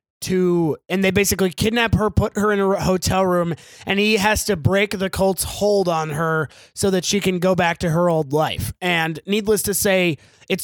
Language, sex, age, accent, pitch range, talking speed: English, male, 20-39, American, 160-190 Hz, 210 wpm